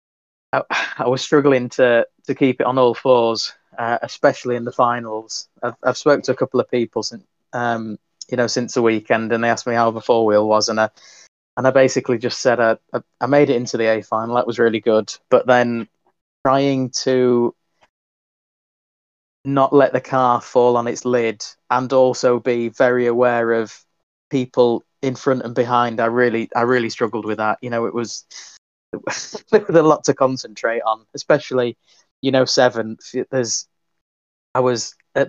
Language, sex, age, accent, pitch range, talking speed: English, male, 20-39, British, 115-130 Hz, 185 wpm